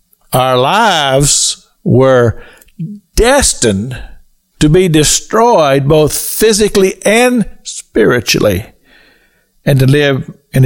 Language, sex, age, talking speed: English, male, 50-69, 85 wpm